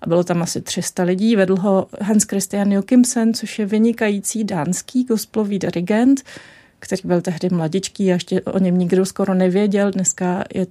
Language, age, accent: Czech, 30-49, native